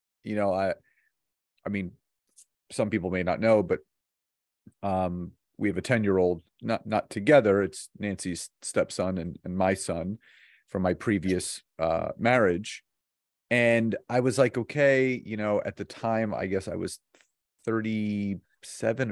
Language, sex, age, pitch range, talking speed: English, male, 30-49, 100-130 Hz, 150 wpm